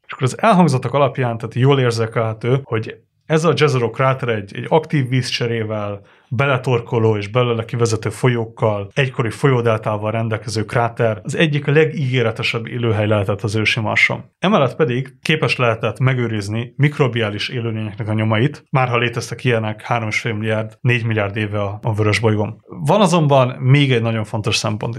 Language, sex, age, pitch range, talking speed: Hungarian, male, 30-49, 110-135 Hz, 160 wpm